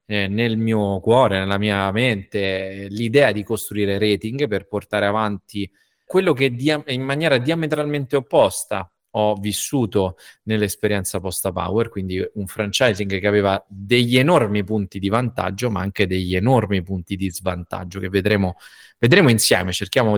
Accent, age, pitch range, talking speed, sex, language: native, 30-49, 100-125 Hz, 140 wpm, male, Italian